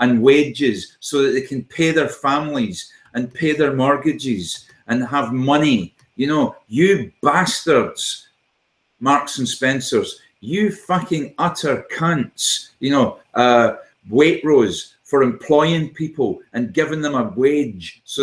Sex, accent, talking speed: male, British, 135 wpm